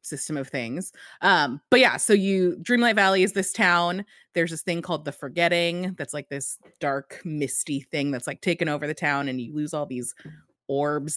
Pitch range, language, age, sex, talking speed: 145-200 Hz, English, 30-49, female, 200 wpm